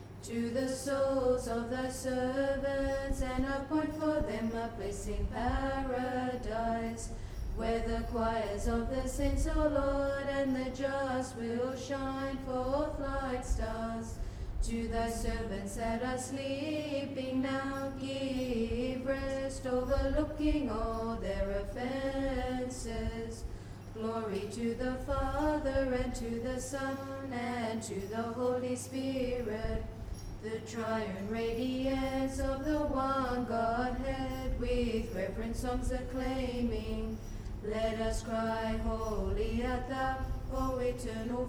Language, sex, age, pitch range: English, female, 30-49, 225-270 Hz